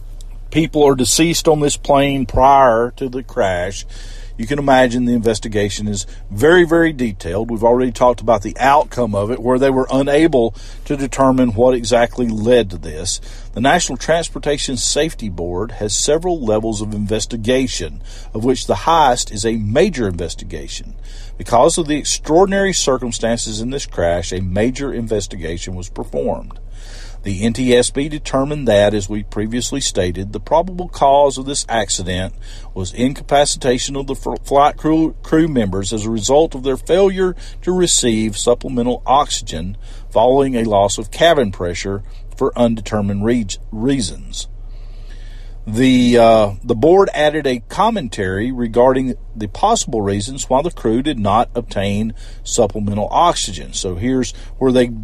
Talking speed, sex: 145 wpm, male